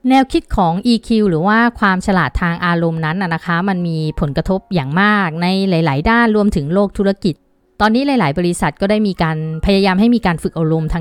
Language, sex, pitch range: Thai, female, 170-230 Hz